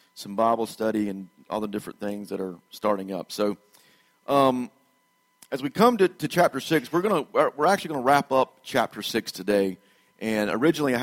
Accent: American